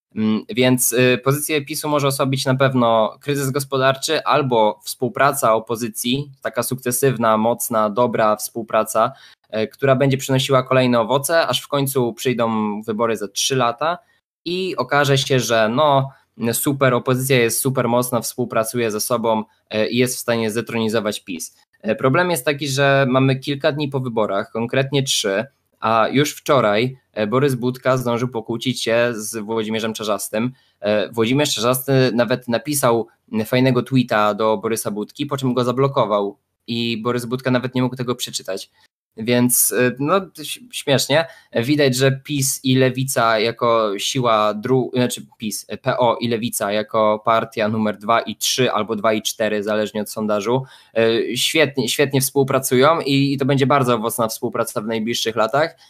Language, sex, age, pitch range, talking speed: Polish, male, 20-39, 115-135 Hz, 145 wpm